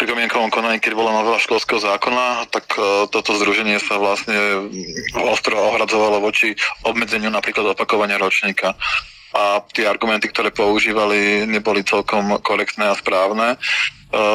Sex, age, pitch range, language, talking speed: male, 20-39, 105-115 Hz, Slovak, 125 wpm